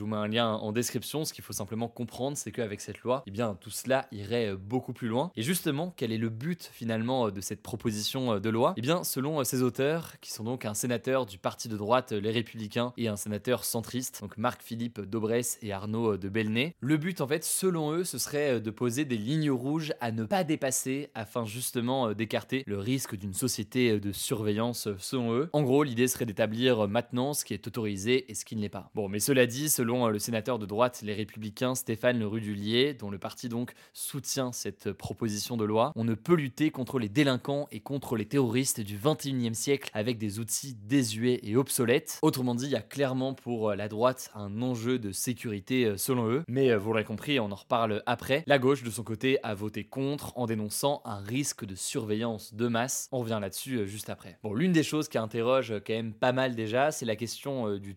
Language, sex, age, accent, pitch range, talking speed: French, male, 20-39, French, 110-130 Hz, 215 wpm